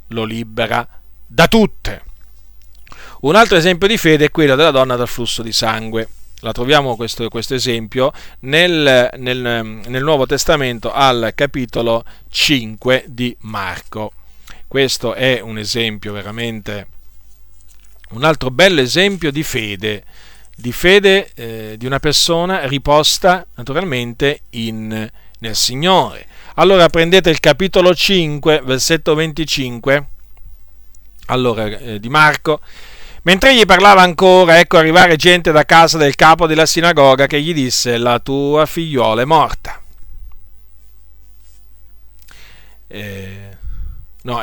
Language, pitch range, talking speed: Italian, 110-150 Hz, 115 wpm